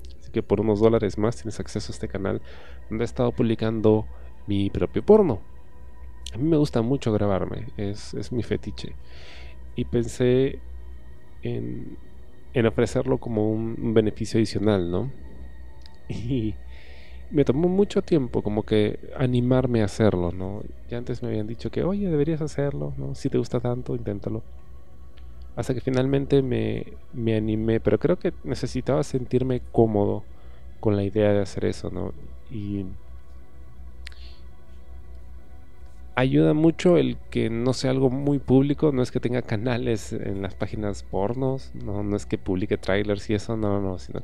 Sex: male